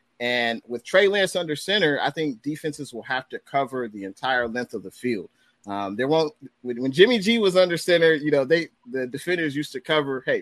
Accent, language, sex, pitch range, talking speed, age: American, English, male, 120-155 Hz, 220 wpm, 30-49